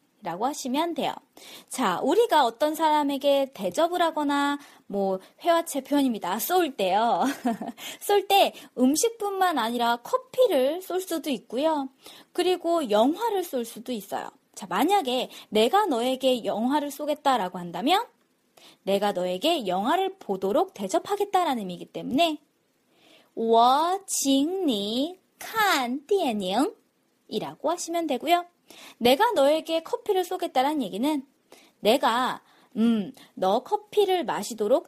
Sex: female